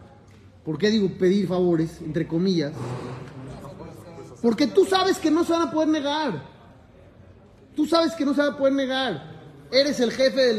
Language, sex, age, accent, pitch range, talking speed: Spanish, male, 30-49, Mexican, 200-285 Hz, 170 wpm